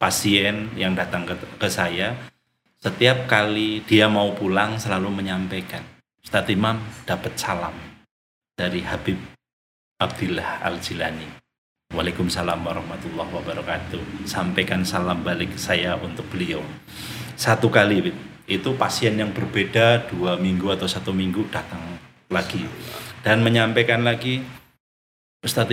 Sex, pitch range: male, 90-115 Hz